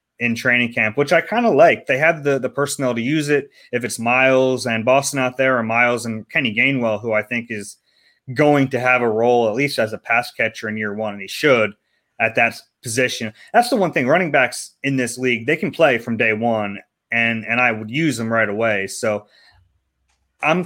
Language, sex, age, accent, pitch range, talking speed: English, male, 30-49, American, 115-135 Hz, 225 wpm